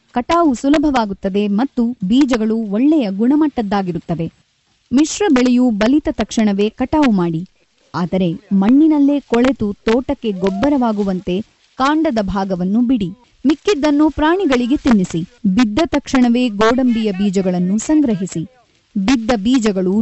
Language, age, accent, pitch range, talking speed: Kannada, 20-39, native, 205-280 Hz, 90 wpm